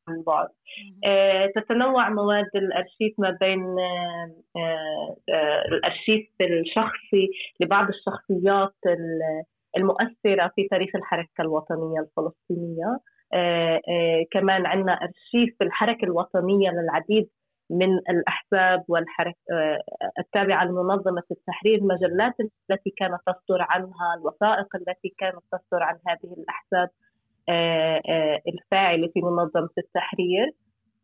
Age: 20-39